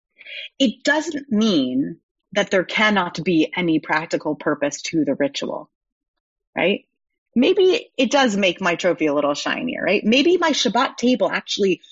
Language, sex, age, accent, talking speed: English, female, 30-49, American, 145 wpm